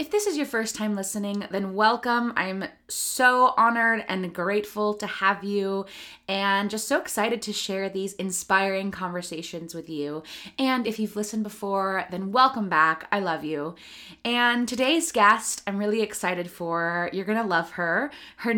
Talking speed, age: 170 wpm, 20-39